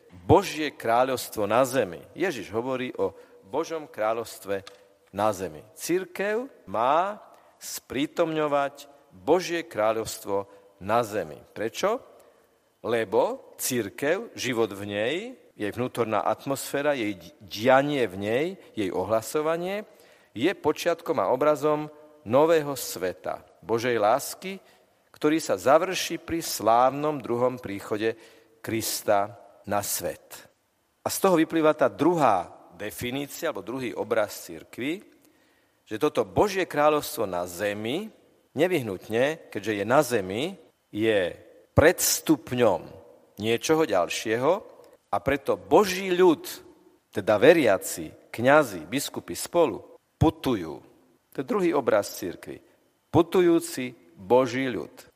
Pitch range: 110-170 Hz